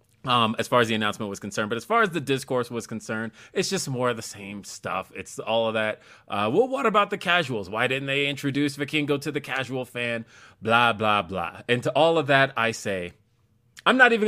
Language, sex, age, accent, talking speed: English, male, 30-49, American, 230 wpm